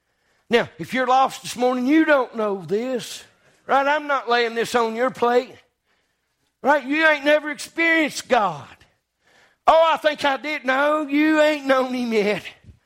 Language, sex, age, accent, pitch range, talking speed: English, male, 50-69, American, 195-270 Hz, 165 wpm